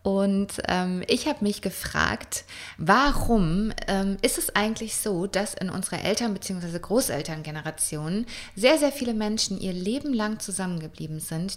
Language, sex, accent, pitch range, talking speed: German, female, German, 175-210 Hz, 140 wpm